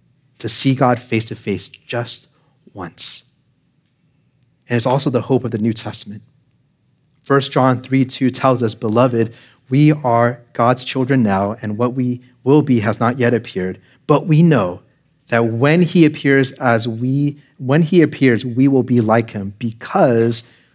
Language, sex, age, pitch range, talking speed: English, male, 30-49, 120-145 Hz, 160 wpm